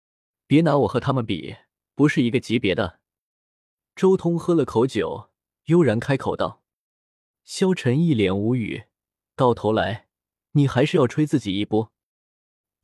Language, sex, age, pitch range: Chinese, male, 20-39, 115-160 Hz